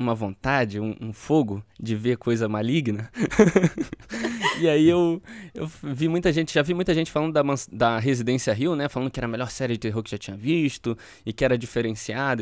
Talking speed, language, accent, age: 205 wpm, Portuguese, Brazilian, 20-39